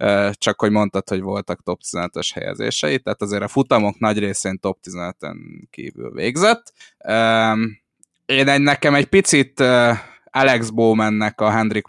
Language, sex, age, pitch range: Hungarian, male, 10-29, 105-135 Hz